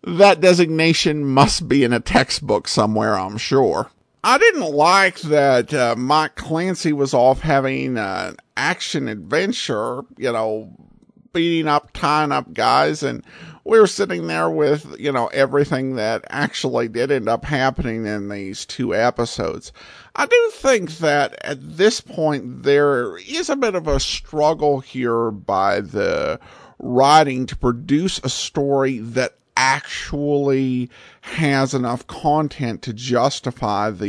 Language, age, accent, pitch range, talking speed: English, 50-69, American, 120-175 Hz, 135 wpm